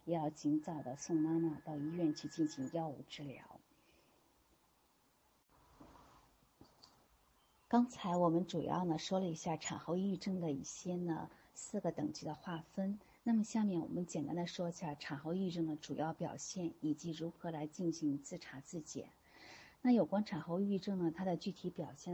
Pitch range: 155-180 Hz